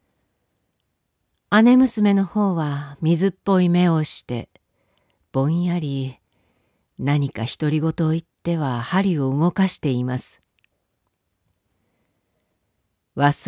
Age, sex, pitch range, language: 50-69, female, 145-215 Hz, Japanese